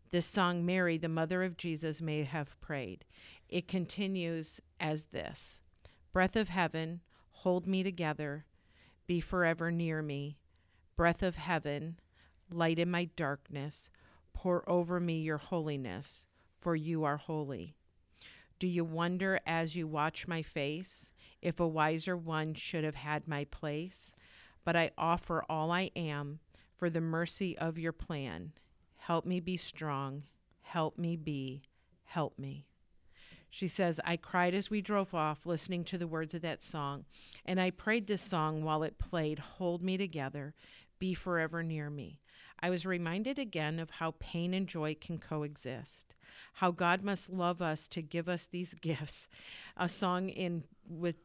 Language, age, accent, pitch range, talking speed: English, 50-69, American, 150-175 Hz, 155 wpm